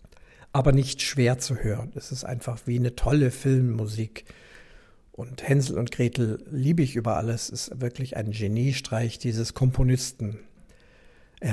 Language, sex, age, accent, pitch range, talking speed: German, male, 60-79, German, 120-140 Hz, 140 wpm